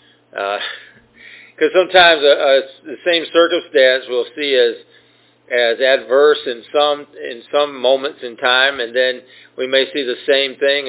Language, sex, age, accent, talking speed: English, male, 40-59, American, 155 wpm